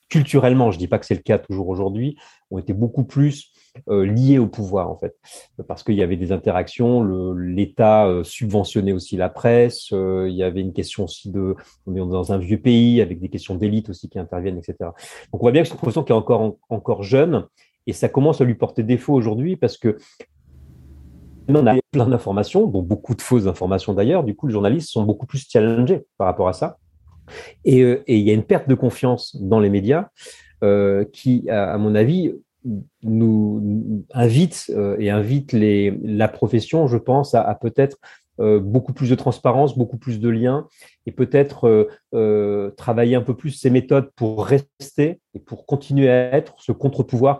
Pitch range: 100-130 Hz